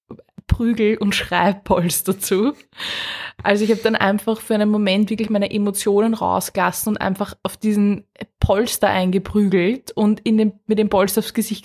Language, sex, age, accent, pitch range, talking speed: German, female, 20-39, Austrian, 195-215 Hz, 155 wpm